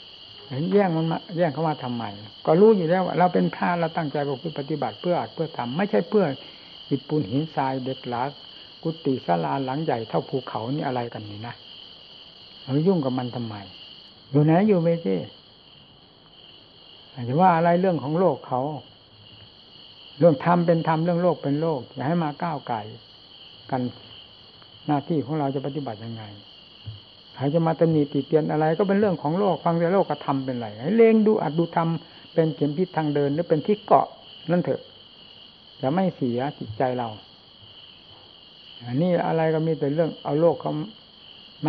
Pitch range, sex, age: 125-170 Hz, male, 60-79